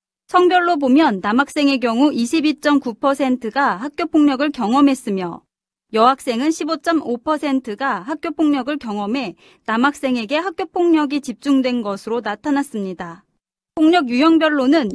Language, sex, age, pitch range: Korean, female, 30-49, 225-310 Hz